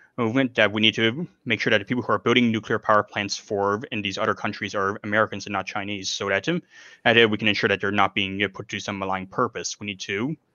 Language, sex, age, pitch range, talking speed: English, male, 20-39, 100-125 Hz, 265 wpm